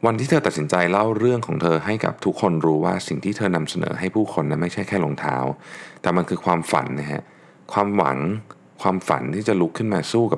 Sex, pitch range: male, 75-100 Hz